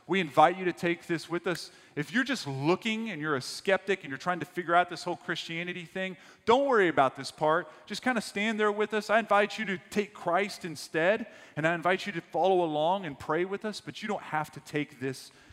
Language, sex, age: English, male, 30-49